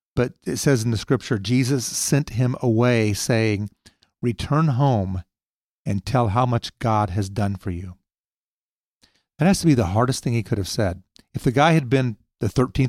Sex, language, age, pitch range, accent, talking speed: male, English, 40-59, 105-125 Hz, American, 180 wpm